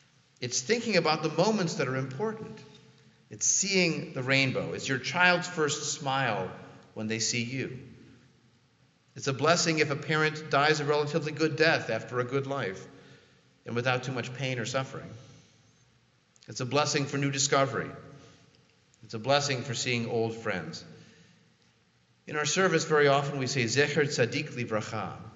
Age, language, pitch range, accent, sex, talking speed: 40-59, English, 125-170 Hz, American, male, 155 wpm